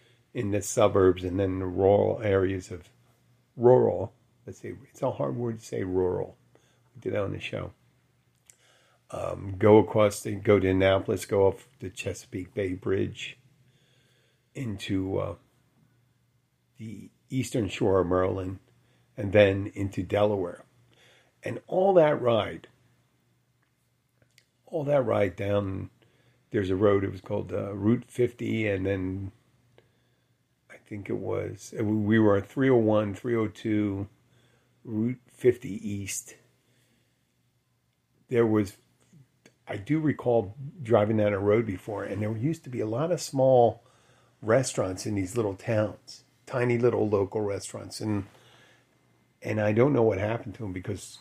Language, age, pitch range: English, 50-69, 100-125 Hz